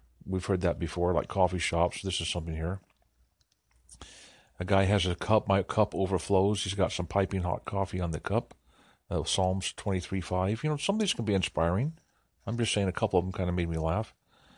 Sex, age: male, 50-69